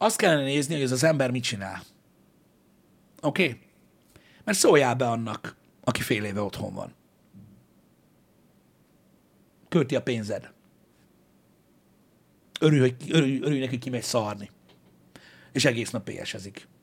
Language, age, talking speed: Hungarian, 60-79, 115 wpm